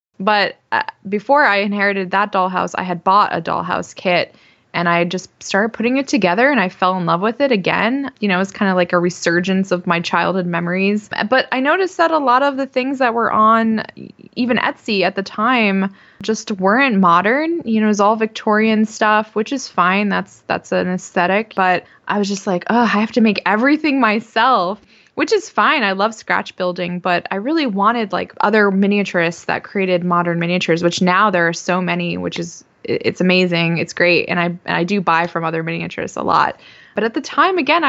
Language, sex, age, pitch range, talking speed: English, female, 20-39, 180-225 Hz, 210 wpm